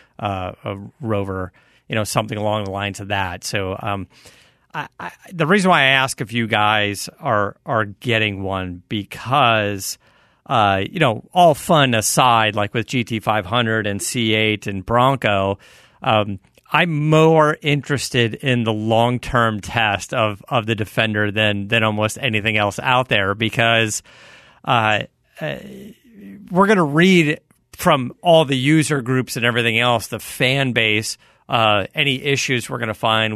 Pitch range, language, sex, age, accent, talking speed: 105-130 Hz, English, male, 40-59, American, 160 wpm